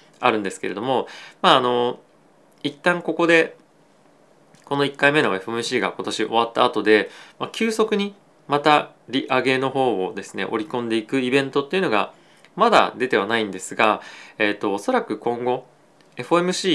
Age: 20-39